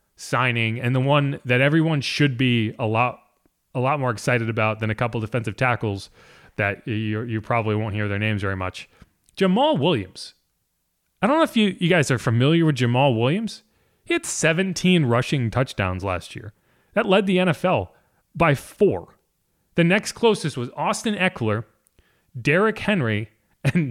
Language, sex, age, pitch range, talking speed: English, male, 30-49, 120-185 Hz, 165 wpm